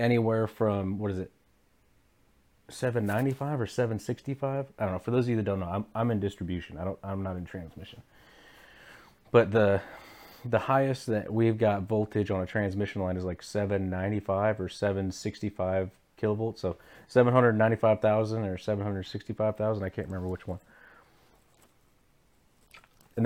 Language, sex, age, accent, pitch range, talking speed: English, male, 30-49, American, 95-115 Hz, 145 wpm